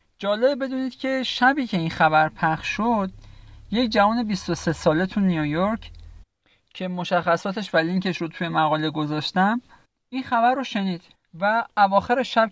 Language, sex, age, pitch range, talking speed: Persian, male, 50-69, 165-225 Hz, 145 wpm